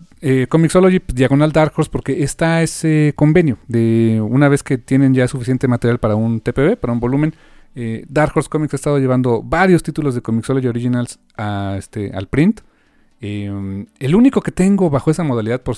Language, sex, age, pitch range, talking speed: Spanish, male, 40-59, 110-150 Hz, 185 wpm